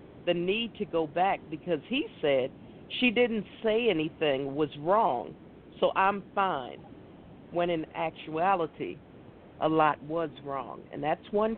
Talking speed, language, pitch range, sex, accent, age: 140 wpm, English, 165-215 Hz, female, American, 50-69